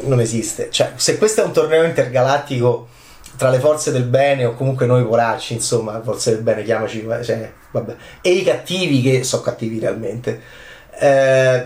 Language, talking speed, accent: Italian, 170 wpm, native